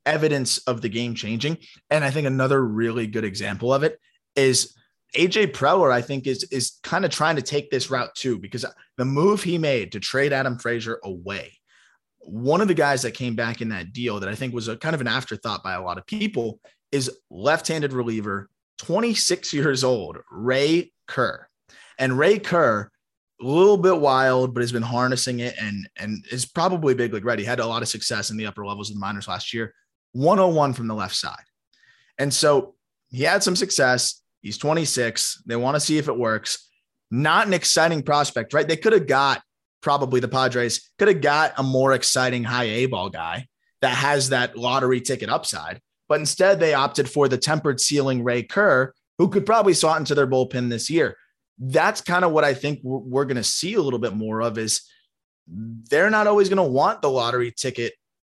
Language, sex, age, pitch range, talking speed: English, male, 20-39, 120-155 Hz, 205 wpm